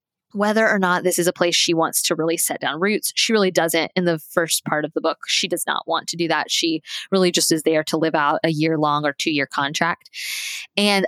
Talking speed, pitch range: 250 wpm, 165-195 Hz